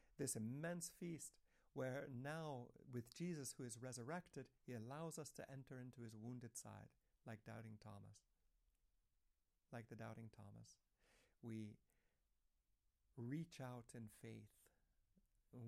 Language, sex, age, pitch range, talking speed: English, male, 60-79, 115-135 Hz, 125 wpm